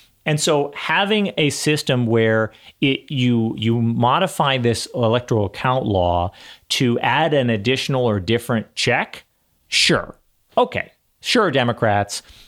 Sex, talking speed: male, 120 wpm